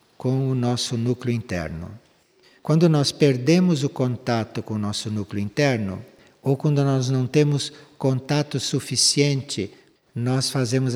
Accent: Brazilian